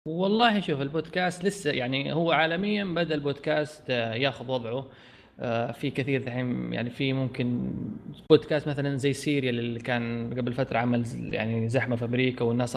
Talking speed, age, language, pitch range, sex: 140 wpm, 20-39, Arabic, 125-170 Hz, male